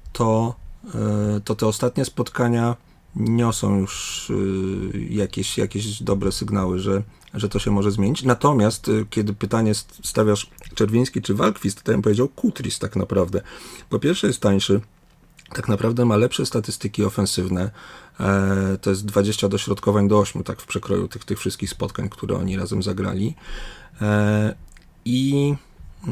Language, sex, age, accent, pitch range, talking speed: Polish, male, 40-59, native, 100-120 Hz, 135 wpm